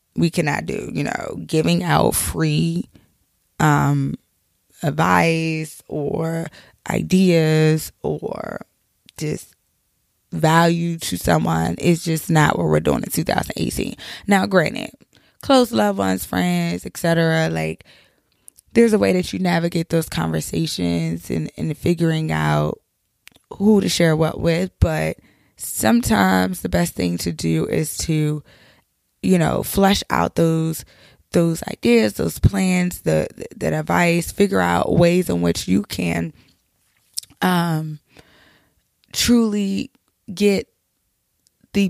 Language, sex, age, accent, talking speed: English, female, 20-39, American, 115 wpm